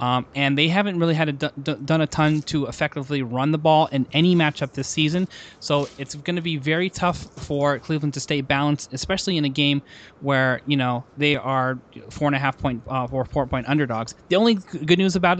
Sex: male